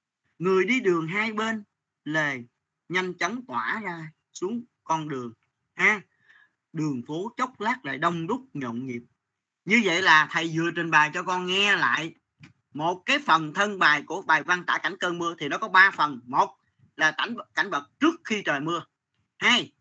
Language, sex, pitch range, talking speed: Vietnamese, male, 150-210 Hz, 190 wpm